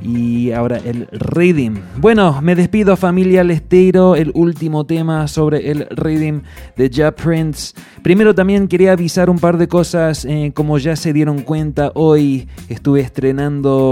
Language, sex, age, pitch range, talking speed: English, male, 20-39, 120-150 Hz, 150 wpm